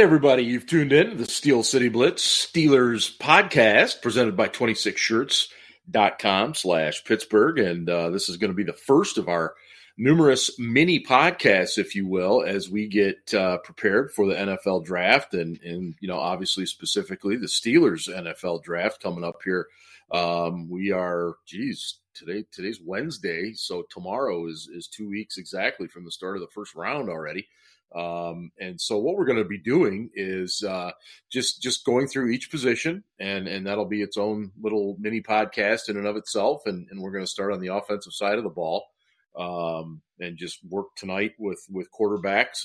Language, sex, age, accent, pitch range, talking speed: English, male, 40-59, American, 90-115 Hz, 180 wpm